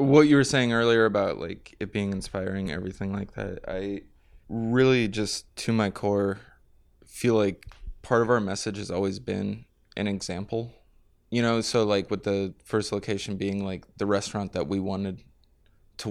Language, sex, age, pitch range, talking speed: English, male, 20-39, 100-110 Hz, 170 wpm